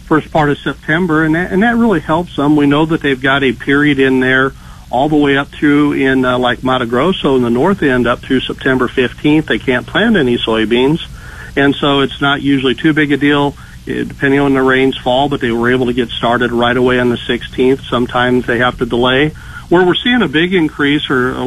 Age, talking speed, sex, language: 50-69, 230 wpm, male, English